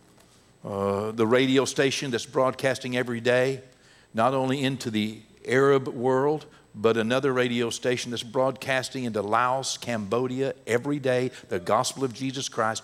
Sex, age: male, 60-79